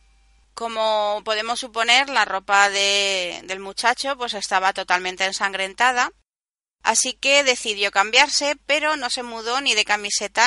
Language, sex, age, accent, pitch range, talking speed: Spanish, female, 30-49, Spanish, 205-275 Hz, 130 wpm